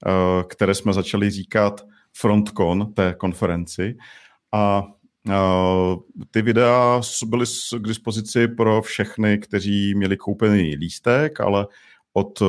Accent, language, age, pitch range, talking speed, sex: native, Czech, 40-59, 95-110 Hz, 100 wpm, male